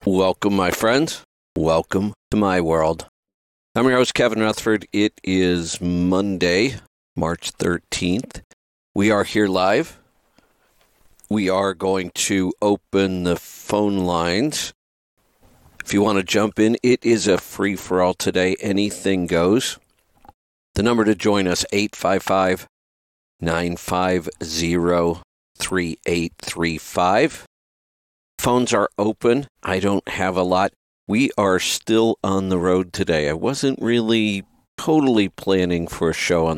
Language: English